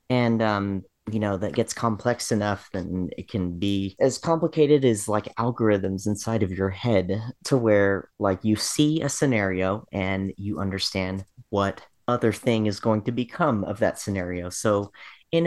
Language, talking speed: English, 165 wpm